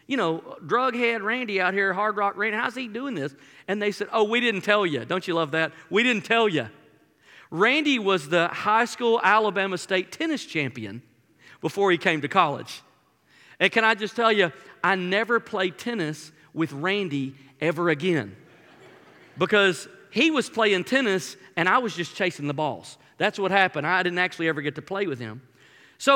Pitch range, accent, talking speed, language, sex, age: 170-255 Hz, American, 190 wpm, English, male, 40-59